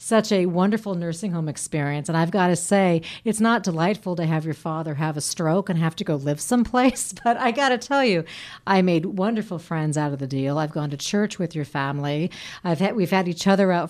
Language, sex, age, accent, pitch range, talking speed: English, female, 40-59, American, 160-210 Hz, 235 wpm